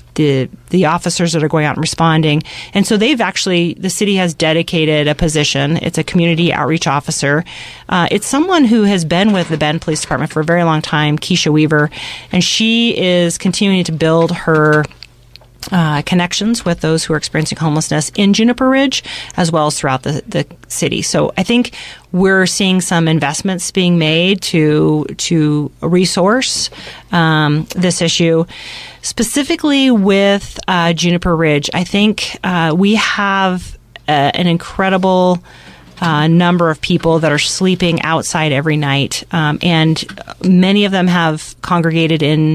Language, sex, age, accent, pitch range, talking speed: English, female, 40-59, American, 155-185 Hz, 160 wpm